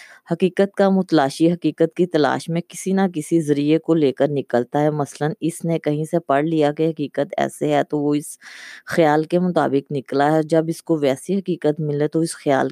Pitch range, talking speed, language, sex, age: 145-170 Hz, 215 wpm, Urdu, female, 20-39